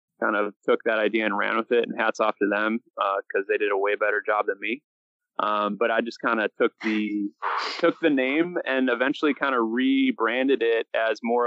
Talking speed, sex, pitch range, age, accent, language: 225 wpm, male, 105-125 Hz, 20-39, American, English